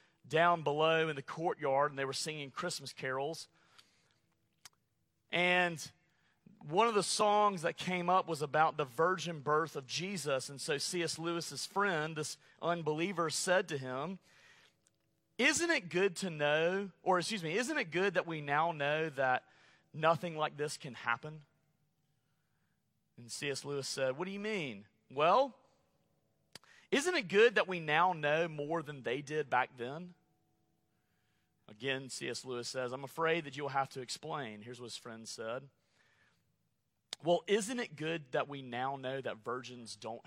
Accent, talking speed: American, 160 wpm